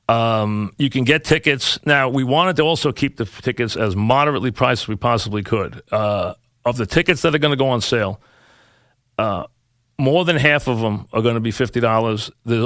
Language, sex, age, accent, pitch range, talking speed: English, male, 40-59, American, 115-135 Hz, 210 wpm